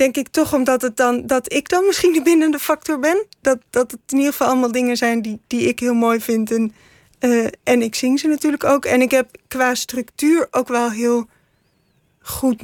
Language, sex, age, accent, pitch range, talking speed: Dutch, female, 20-39, Dutch, 235-260 Hz, 220 wpm